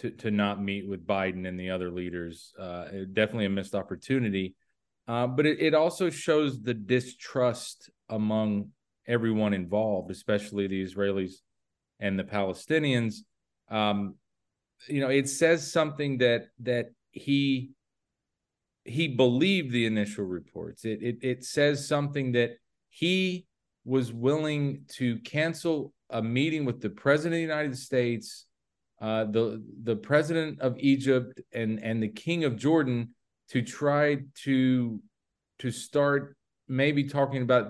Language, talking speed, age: English, 135 wpm, 40-59